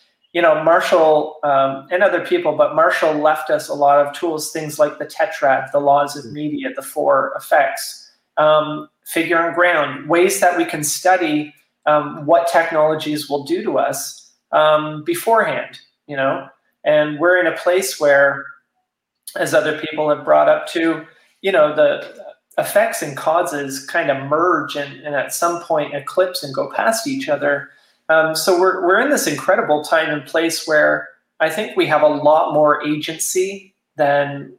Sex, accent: male, American